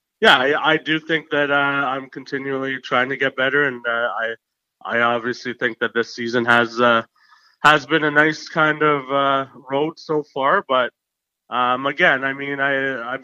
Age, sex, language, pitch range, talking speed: 30-49, male, English, 120-140 Hz, 185 wpm